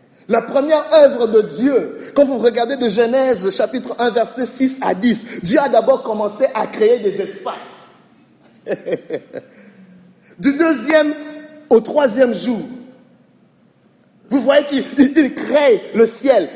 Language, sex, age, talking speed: French, male, 50-69, 125 wpm